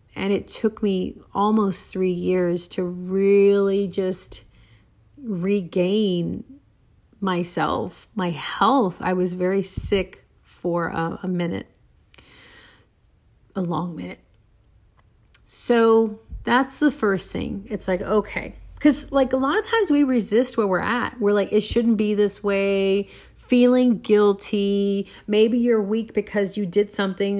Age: 40-59